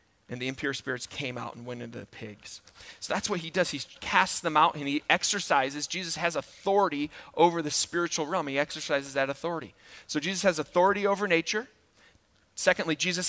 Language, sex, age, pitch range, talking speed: English, male, 30-49, 145-180 Hz, 190 wpm